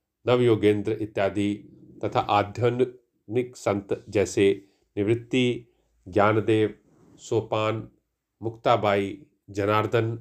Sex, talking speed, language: male, 65 wpm, Hindi